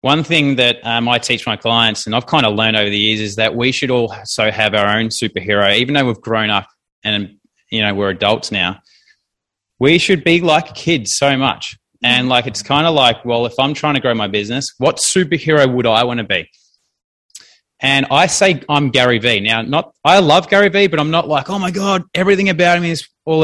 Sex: male